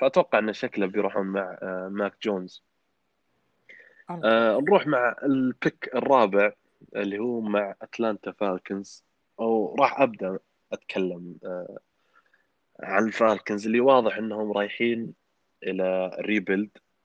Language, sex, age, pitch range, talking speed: Arabic, male, 20-39, 95-115 Hz, 95 wpm